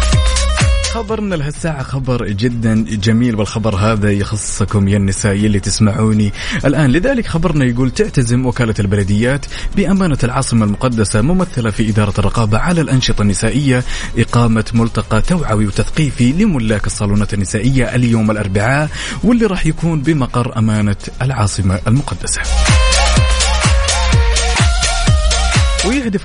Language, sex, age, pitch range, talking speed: Arabic, male, 30-49, 100-135 Hz, 105 wpm